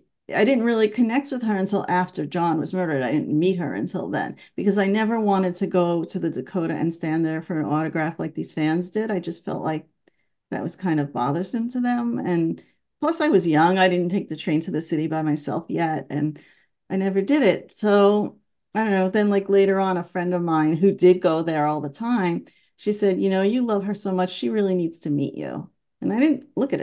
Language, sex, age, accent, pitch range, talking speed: English, female, 40-59, American, 155-195 Hz, 240 wpm